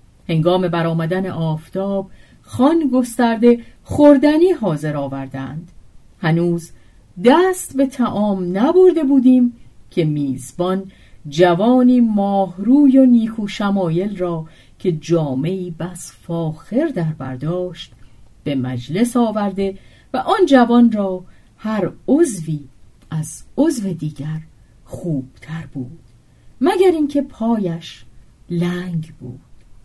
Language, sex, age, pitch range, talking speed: Persian, female, 40-59, 145-240 Hz, 95 wpm